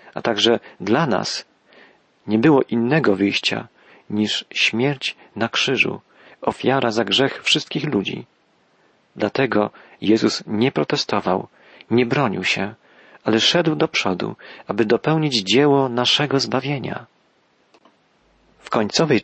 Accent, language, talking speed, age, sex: native, Polish, 110 wpm, 40-59, male